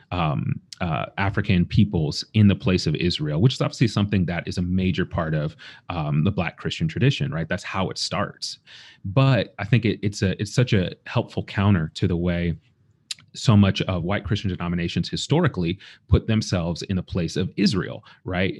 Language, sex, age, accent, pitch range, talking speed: English, male, 30-49, American, 90-120 Hz, 185 wpm